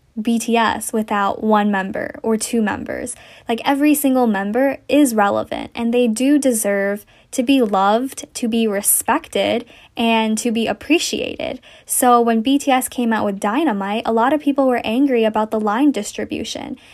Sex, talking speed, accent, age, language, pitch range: female, 155 wpm, American, 10-29, English, 215-260 Hz